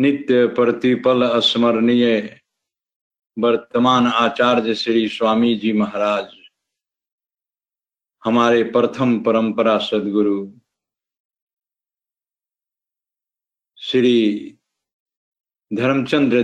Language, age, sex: Hindi, 50-69, male